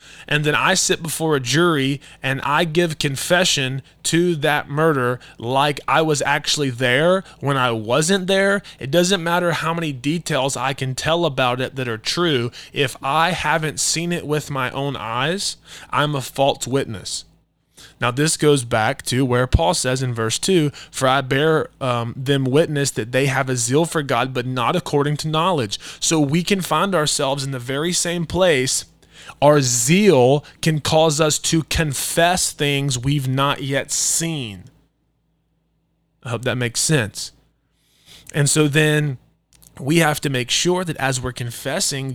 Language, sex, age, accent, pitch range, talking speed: English, male, 20-39, American, 130-160 Hz, 170 wpm